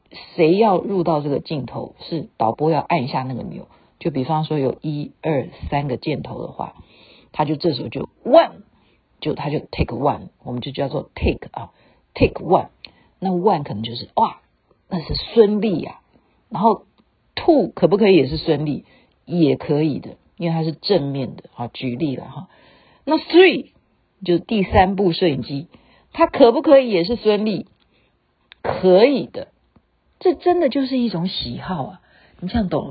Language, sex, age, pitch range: Chinese, female, 50-69, 150-235 Hz